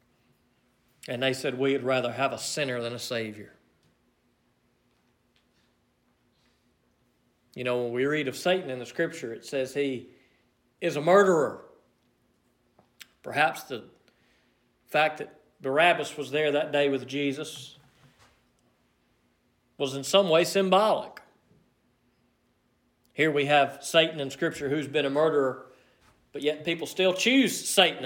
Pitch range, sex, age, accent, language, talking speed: 130-160 Hz, male, 40-59, American, English, 125 wpm